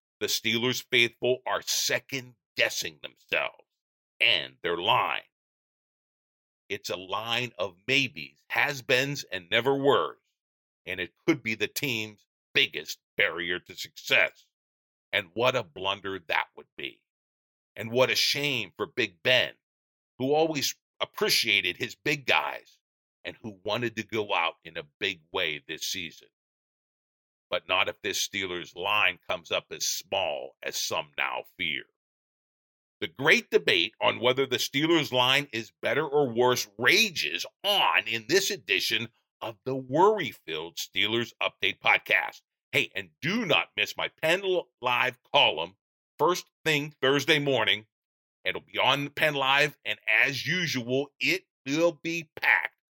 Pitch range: 105-145 Hz